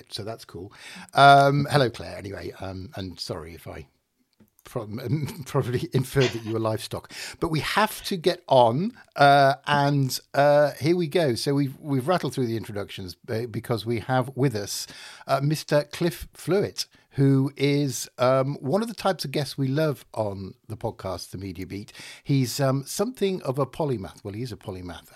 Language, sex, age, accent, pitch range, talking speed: English, male, 50-69, British, 105-135 Hz, 180 wpm